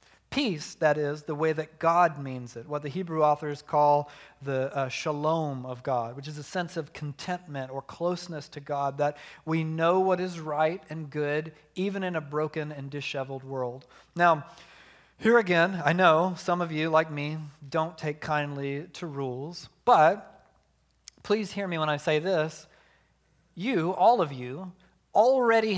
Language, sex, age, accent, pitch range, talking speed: English, male, 40-59, American, 140-175 Hz, 170 wpm